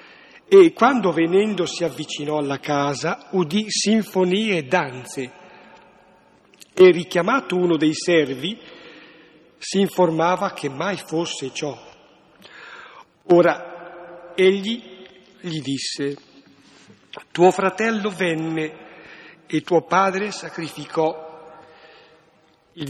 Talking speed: 90 wpm